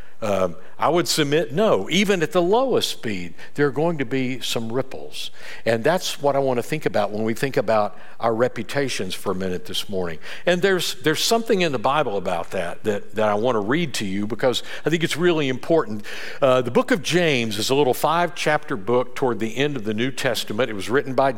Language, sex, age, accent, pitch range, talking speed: English, male, 60-79, American, 125-170 Hz, 225 wpm